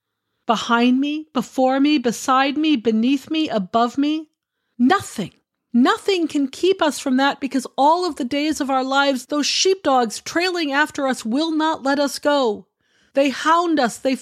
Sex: female